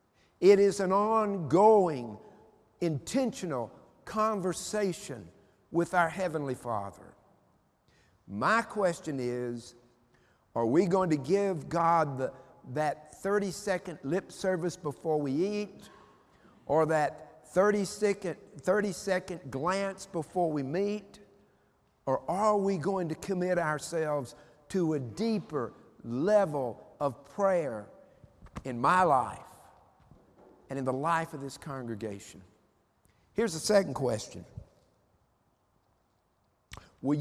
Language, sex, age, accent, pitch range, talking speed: English, male, 50-69, American, 140-195 Hz, 100 wpm